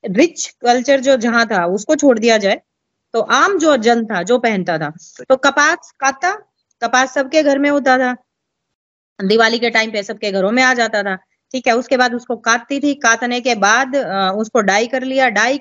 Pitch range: 210-275 Hz